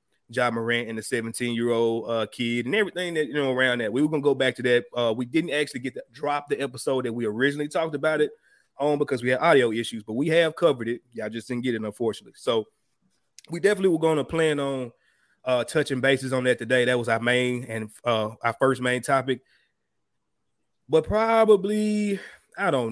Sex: male